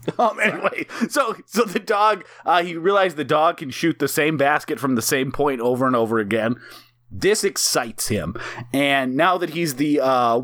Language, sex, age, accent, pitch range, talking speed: English, male, 30-49, American, 125-170 Hz, 190 wpm